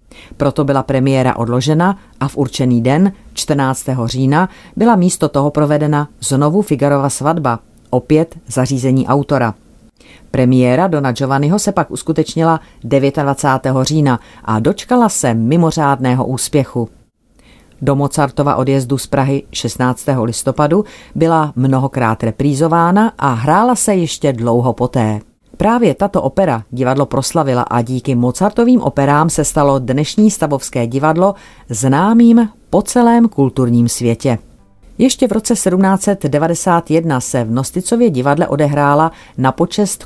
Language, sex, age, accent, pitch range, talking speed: Czech, female, 40-59, native, 130-165 Hz, 120 wpm